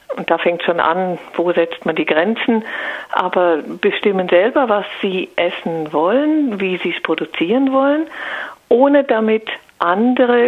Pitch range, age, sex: 170-240 Hz, 50-69, female